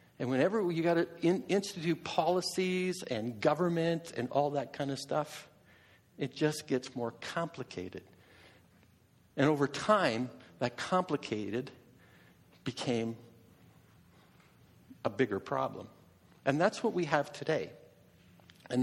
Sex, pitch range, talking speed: male, 120-165 Hz, 115 wpm